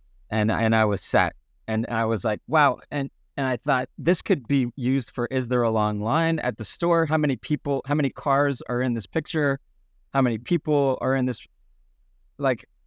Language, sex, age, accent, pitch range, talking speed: English, male, 30-49, American, 105-140 Hz, 210 wpm